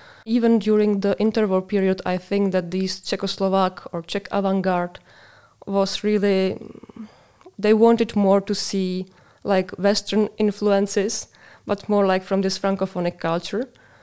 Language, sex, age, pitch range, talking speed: Czech, female, 20-39, 185-210 Hz, 130 wpm